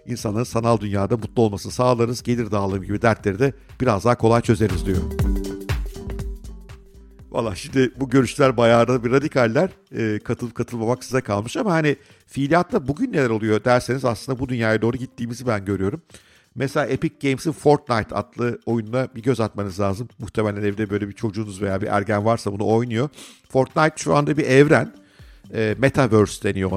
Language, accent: Turkish, native